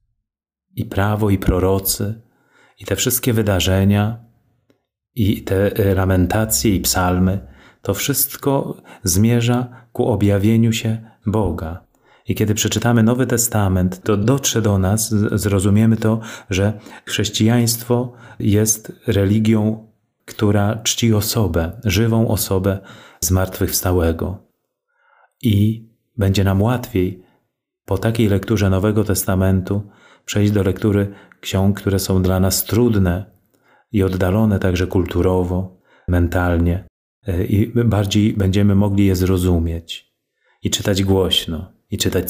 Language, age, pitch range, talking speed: Polish, 30-49, 95-110 Hz, 110 wpm